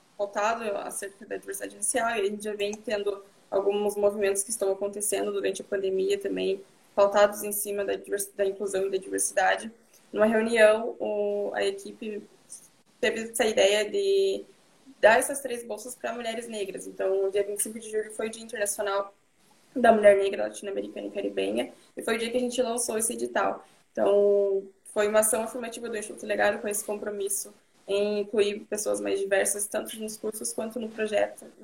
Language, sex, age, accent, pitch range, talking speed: Portuguese, female, 10-29, Brazilian, 195-215 Hz, 180 wpm